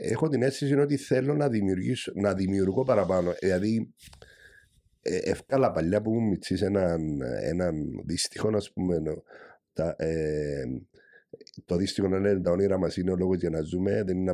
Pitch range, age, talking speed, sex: 95-130 Hz, 50-69, 165 wpm, male